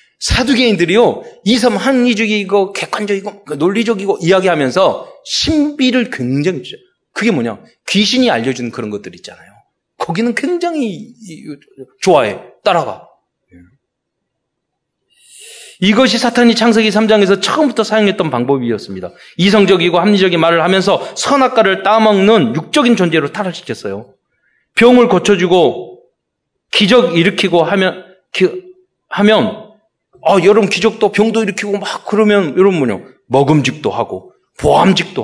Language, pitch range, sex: Korean, 170-230 Hz, male